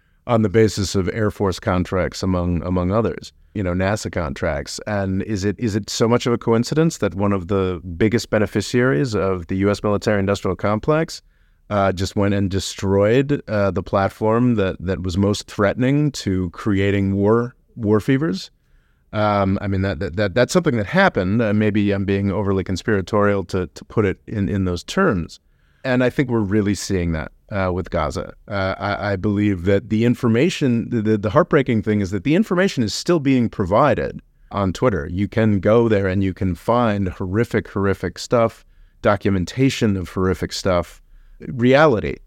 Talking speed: 180 wpm